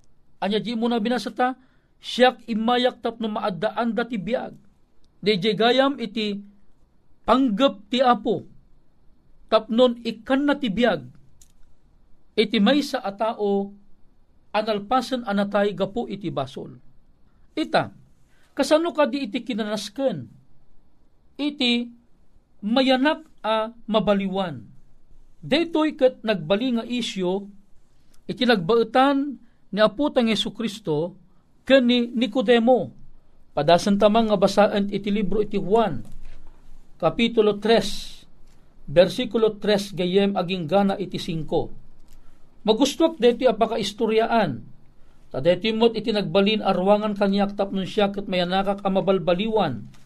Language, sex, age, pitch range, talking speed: Filipino, male, 50-69, 195-240 Hz, 105 wpm